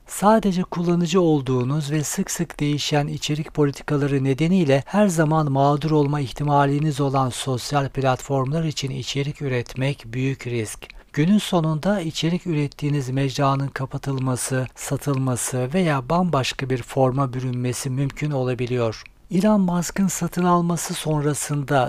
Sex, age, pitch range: male, 60-79, 130-160 Hz